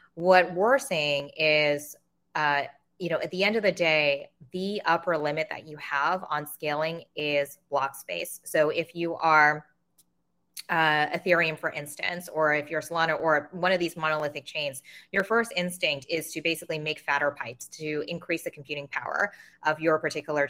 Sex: female